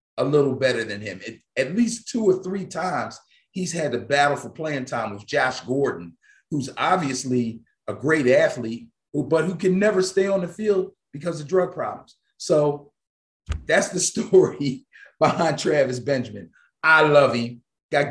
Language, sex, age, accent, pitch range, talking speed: English, male, 40-59, American, 125-160 Hz, 160 wpm